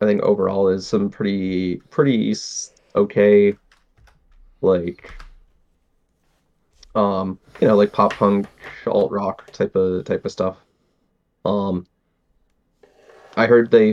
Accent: American